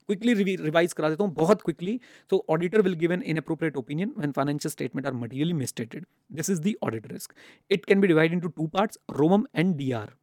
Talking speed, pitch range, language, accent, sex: 190 wpm, 150-205 Hz, English, Indian, male